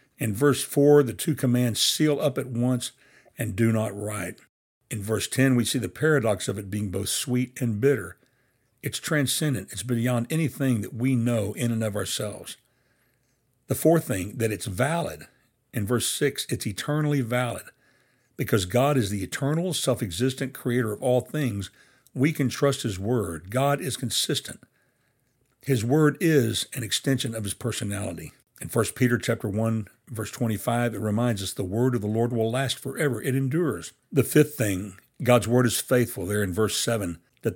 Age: 60-79